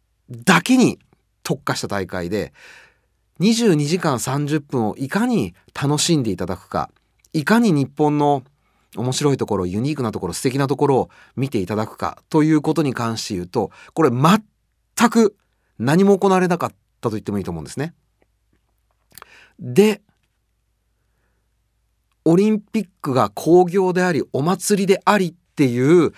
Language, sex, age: Japanese, male, 30-49